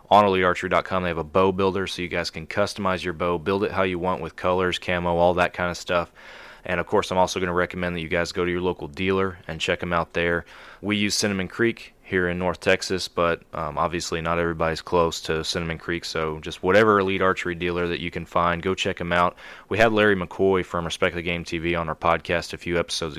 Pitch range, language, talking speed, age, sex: 85-95 Hz, English, 245 wpm, 20-39, male